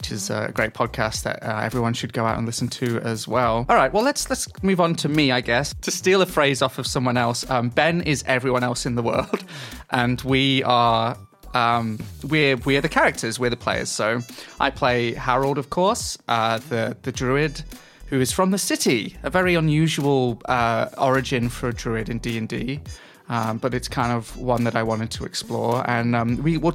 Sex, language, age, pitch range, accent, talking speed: male, English, 20-39, 120-150 Hz, British, 220 wpm